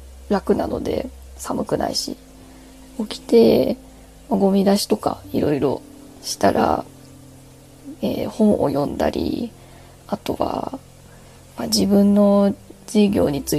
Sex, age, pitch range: female, 20-39, 195-235 Hz